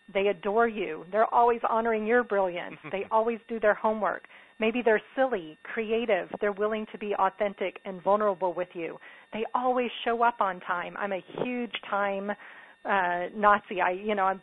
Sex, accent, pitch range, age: female, American, 185-225 Hz, 40-59